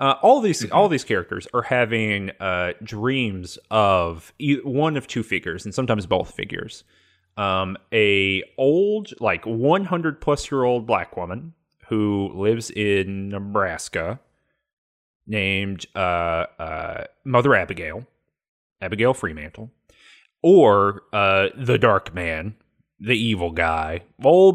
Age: 30-49